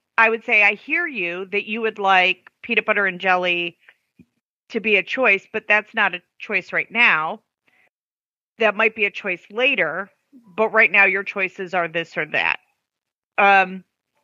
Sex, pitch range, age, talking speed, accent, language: female, 185-235 Hz, 30-49, 175 wpm, American, English